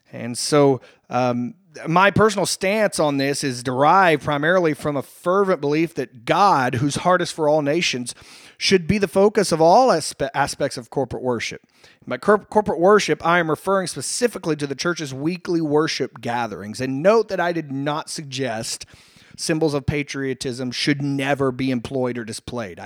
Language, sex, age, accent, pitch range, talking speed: English, male, 30-49, American, 140-185 Hz, 165 wpm